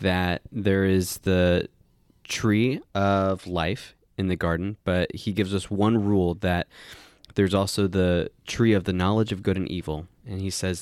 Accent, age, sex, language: American, 20-39, male, English